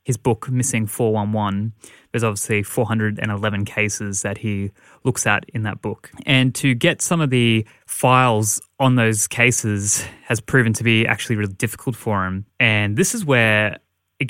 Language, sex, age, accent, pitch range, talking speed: English, male, 20-39, Australian, 105-125 Hz, 165 wpm